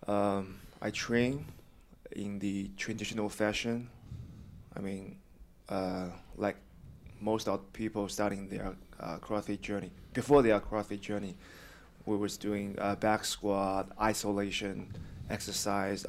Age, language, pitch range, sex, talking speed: 20-39, English, 100-110 Hz, male, 110 wpm